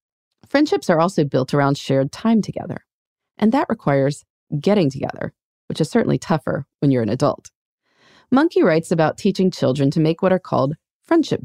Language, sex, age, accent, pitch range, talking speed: English, female, 30-49, American, 140-225 Hz, 170 wpm